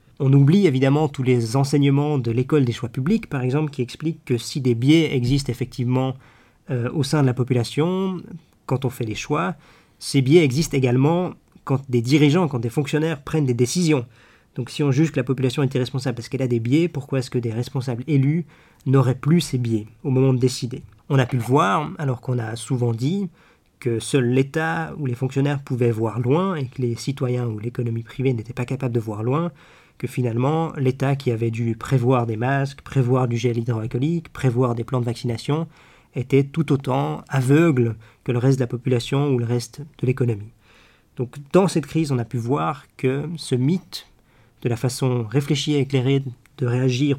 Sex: male